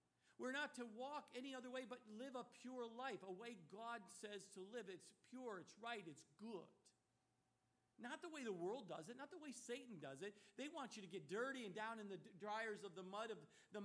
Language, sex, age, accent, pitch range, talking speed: English, male, 50-69, American, 195-250 Hz, 230 wpm